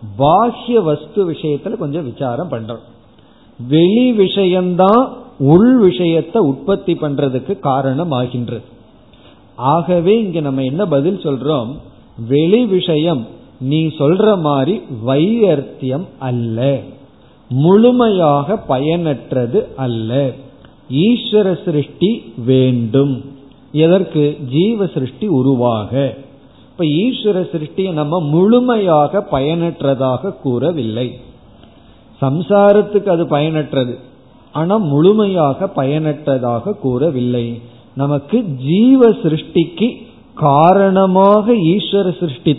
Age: 50-69